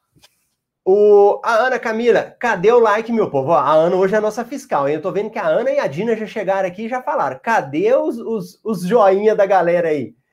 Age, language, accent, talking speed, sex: 30-49, Portuguese, Brazilian, 230 wpm, male